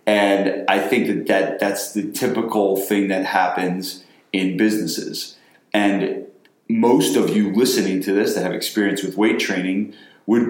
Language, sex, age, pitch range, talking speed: English, male, 30-49, 95-105 Hz, 155 wpm